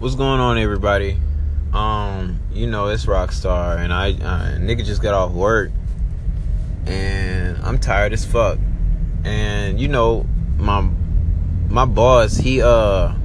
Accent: American